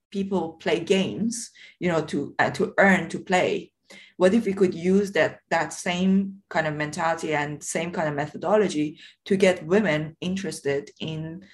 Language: English